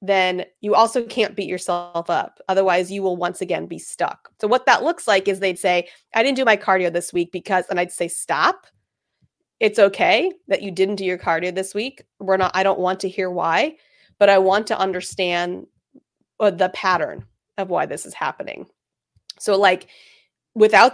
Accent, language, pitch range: American, English, 185-225 Hz